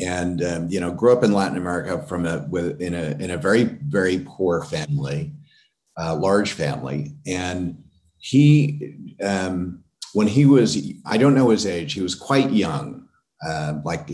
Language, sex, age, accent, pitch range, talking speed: English, male, 50-69, American, 90-140 Hz, 170 wpm